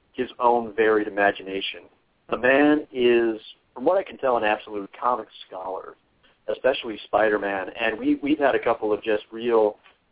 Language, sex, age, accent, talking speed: English, male, 40-59, American, 165 wpm